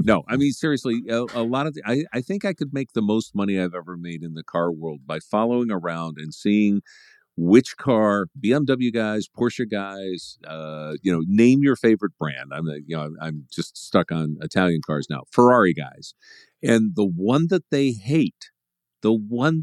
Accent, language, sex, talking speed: American, English, male, 200 wpm